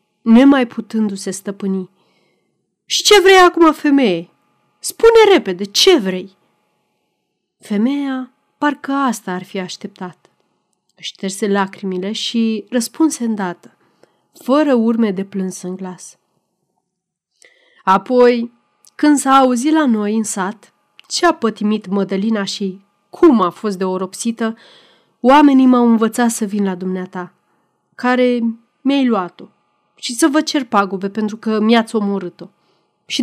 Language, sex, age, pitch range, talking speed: Romanian, female, 30-49, 190-245 Hz, 120 wpm